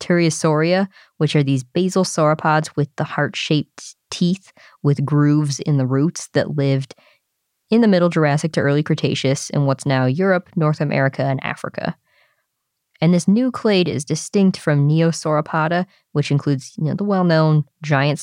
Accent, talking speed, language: American, 150 wpm, English